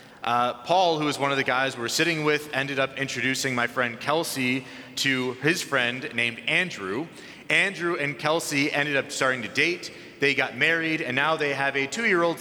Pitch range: 125-160 Hz